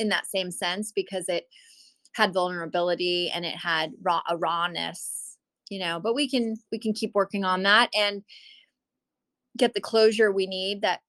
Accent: American